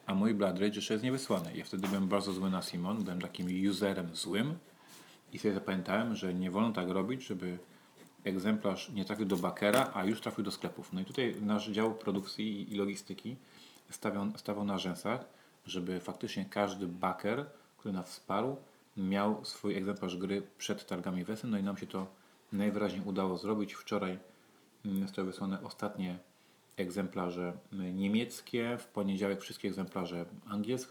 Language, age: Polish, 30-49